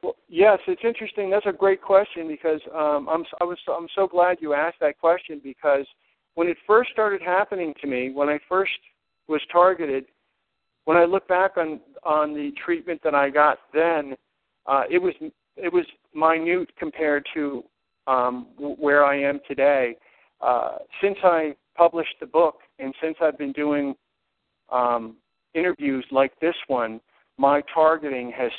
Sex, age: male, 60-79